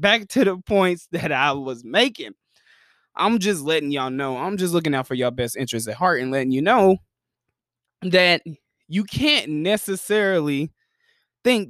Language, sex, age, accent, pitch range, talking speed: English, male, 20-39, American, 130-190 Hz, 165 wpm